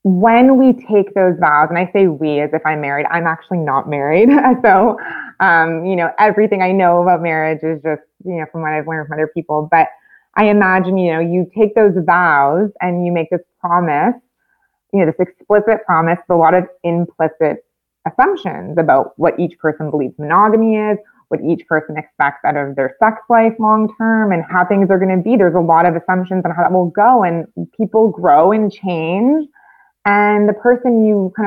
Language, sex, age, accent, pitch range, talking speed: English, female, 20-39, American, 170-210 Hz, 200 wpm